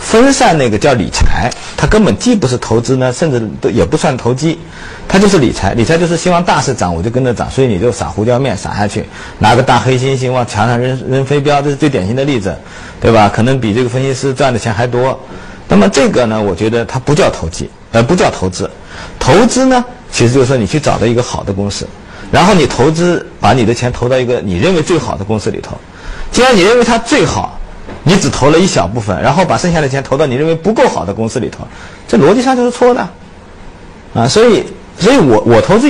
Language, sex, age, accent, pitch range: Chinese, male, 50-69, native, 115-170 Hz